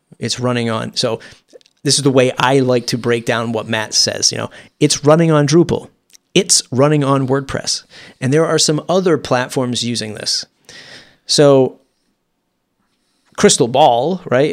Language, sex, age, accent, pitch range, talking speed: English, male, 30-49, American, 120-155 Hz, 155 wpm